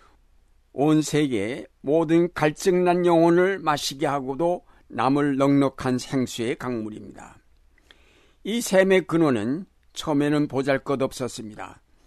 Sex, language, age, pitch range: male, Korean, 60-79, 120-155 Hz